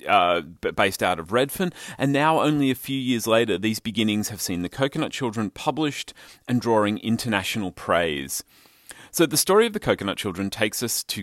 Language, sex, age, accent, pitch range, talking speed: English, male, 30-49, Australian, 95-120 Hz, 180 wpm